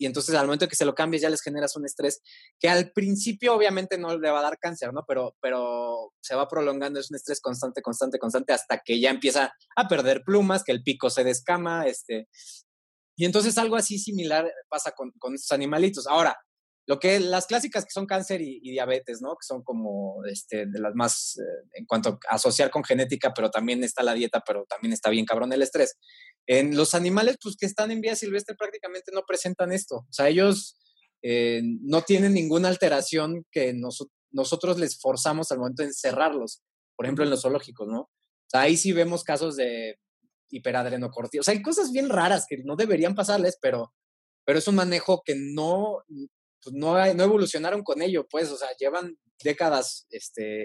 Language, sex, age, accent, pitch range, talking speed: Spanish, male, 20-39, Mexican, 130-190 Hz, 200 wpm